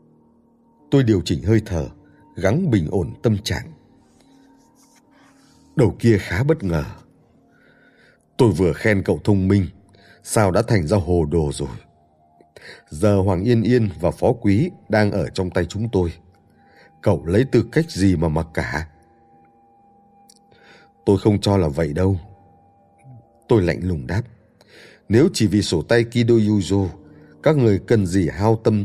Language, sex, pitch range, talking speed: Vietnamese, male, 85-115 Hz, 150 wpm